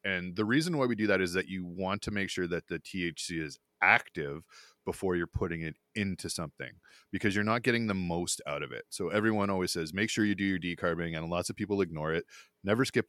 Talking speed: 240 wpm